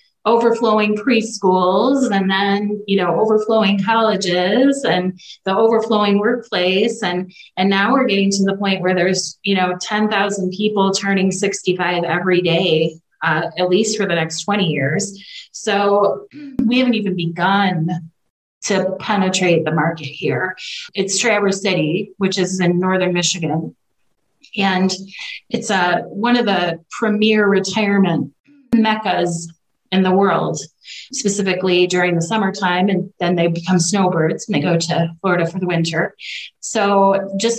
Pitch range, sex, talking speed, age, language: 175-205 Hz, female, 140 wpm, 30-49, English